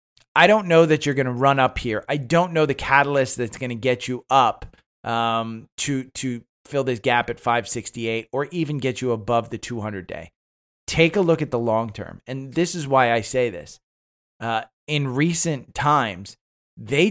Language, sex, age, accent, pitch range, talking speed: English, male, 30-49, American, 115-140 Hz, 195 wpm